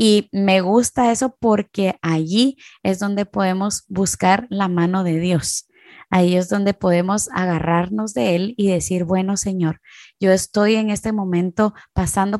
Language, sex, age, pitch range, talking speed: Spanish, female, 20-39, 175-220 Hz, 150 wpm